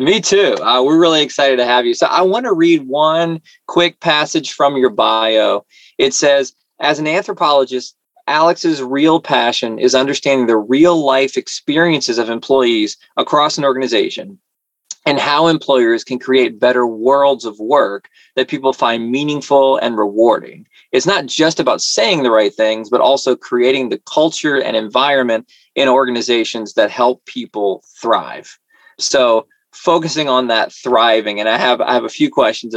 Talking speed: 160 wpm